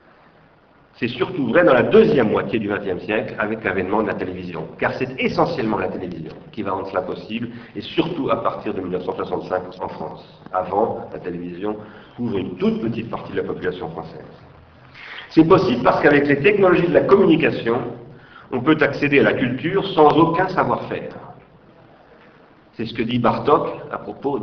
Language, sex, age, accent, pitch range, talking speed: French, male, 50-69, French, 110-150 Hz, 170 wpm